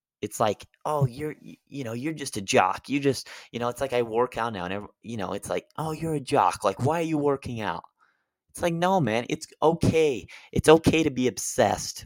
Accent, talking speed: American, 230 wpm